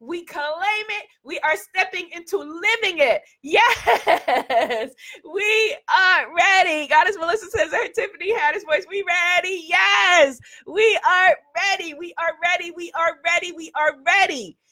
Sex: female